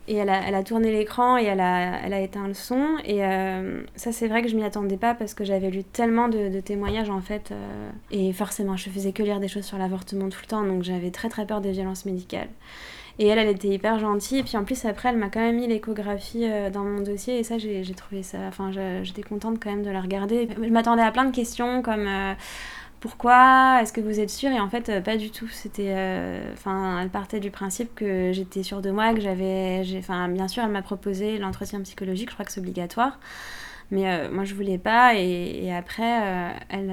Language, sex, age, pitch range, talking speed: French, female, 20-39, 195-230 Hz, 245 wpm